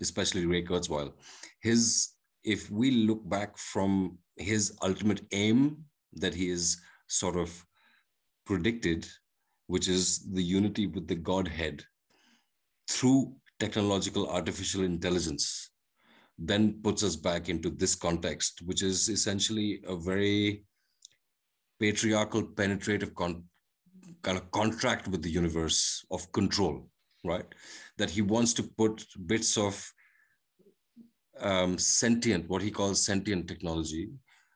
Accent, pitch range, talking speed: Indian, 90-110 Hz, 115 wpm